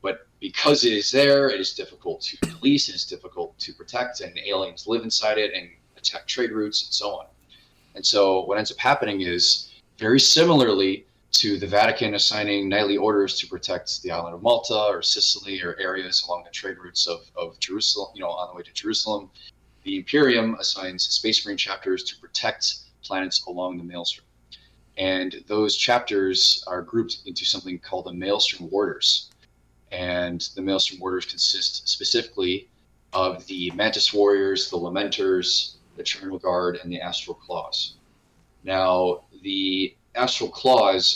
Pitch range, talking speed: 90-115 Hz, 160 wpm